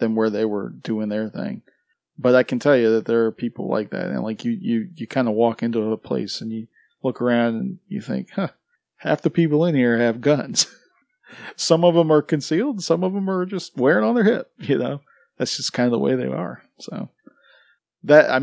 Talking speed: 230 wpm